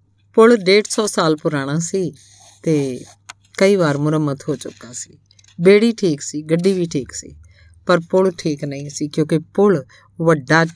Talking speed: 150 wpm